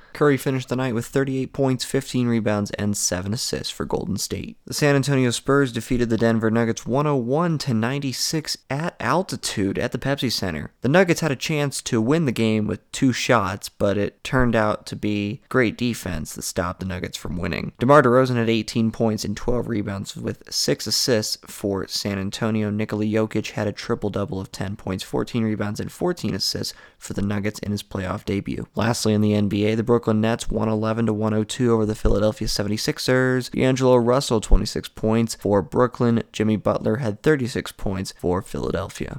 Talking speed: 180 wpm